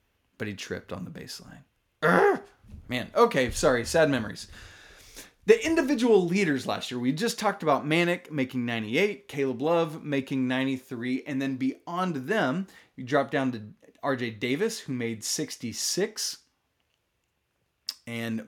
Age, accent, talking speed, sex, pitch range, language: 30-49, American, 135 wpm, male, 120-155 Hz, English